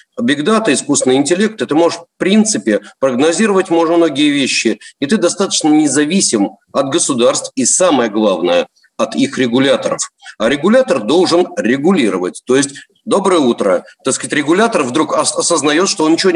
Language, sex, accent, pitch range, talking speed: Russian, male, native, 160-235 Hz, 145 wpm